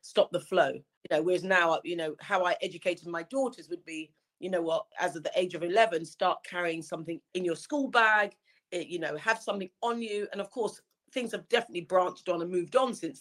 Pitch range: 165-200 Hz